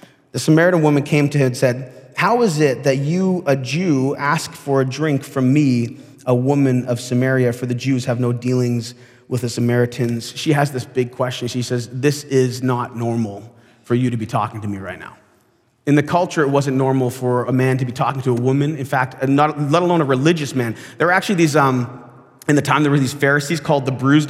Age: 30-49